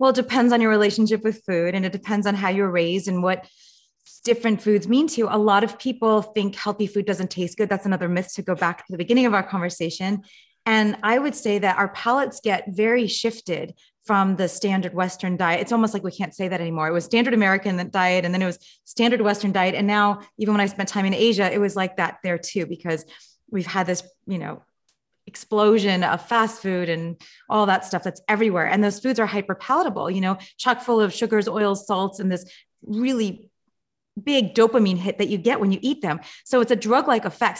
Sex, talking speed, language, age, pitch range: female, 225 wpm, English, 30-49, 185-230 Hz